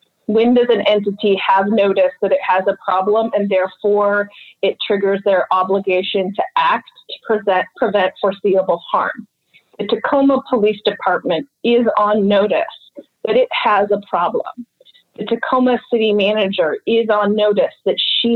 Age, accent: 30-49, American